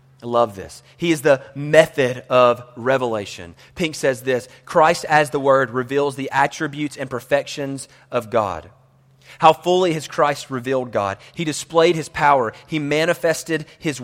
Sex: male